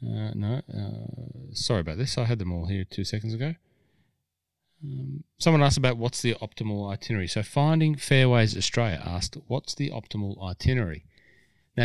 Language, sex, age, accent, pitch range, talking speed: English, male, 30-49, Australian, 90-115 Hz, 160 wpm